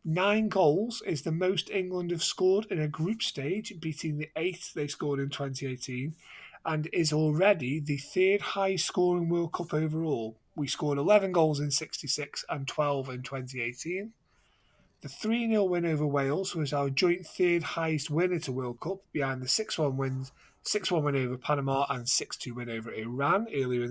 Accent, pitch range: British, 135-180 Hz